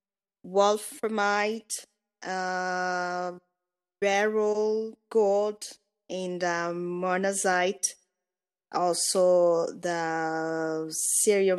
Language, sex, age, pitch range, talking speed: English, female, 20-39, 175-205 Hz, 50 wpm